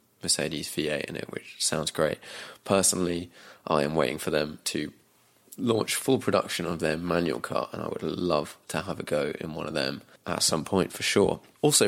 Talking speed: 195 wpm